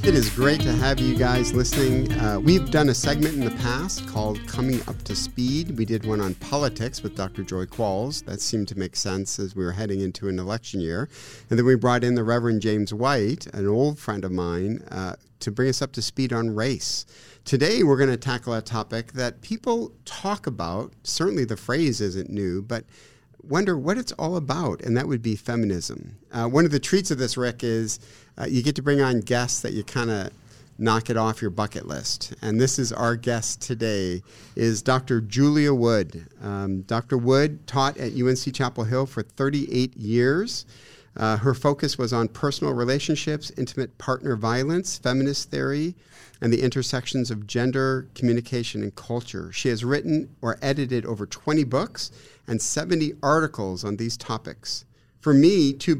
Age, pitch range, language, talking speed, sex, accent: 50-69, 110-135 Hz, English, 190 wpm, male, American